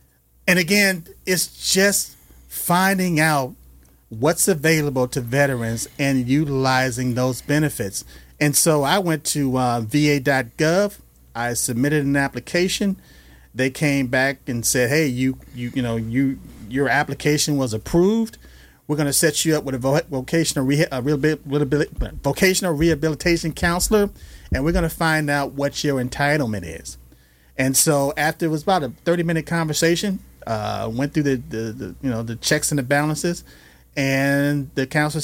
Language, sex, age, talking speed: English, male, 40-59, 145 wpm